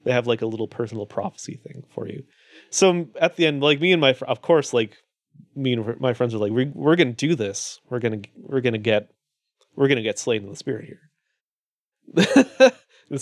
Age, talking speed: 30-49, 235 wpm